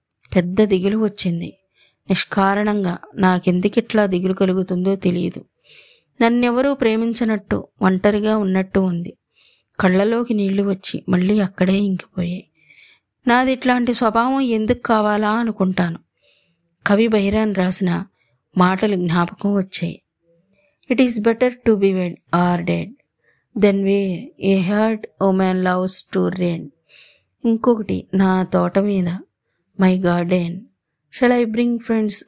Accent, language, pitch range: native, Telugu, 180-220 Hz